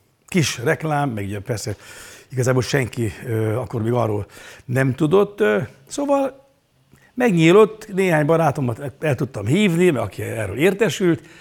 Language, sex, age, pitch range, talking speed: Hungarian, male, 60-79, 125-175 Hz, 115 wpm